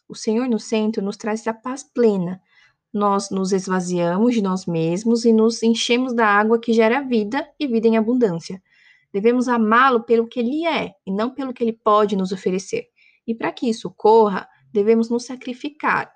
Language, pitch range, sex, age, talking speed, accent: Portuguese, 200-235 Hz, female, 20-39, 180 wpm, Brazilian